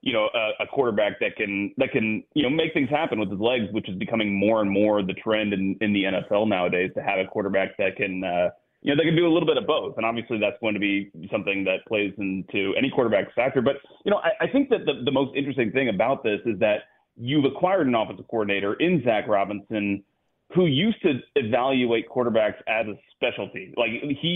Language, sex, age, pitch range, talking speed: English, male, 30-49, 105-140 Hz, 230 wpm